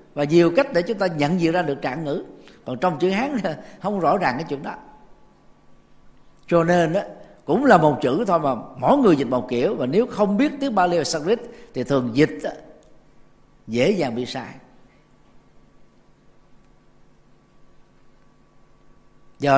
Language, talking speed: Vietnamese, 155 wpm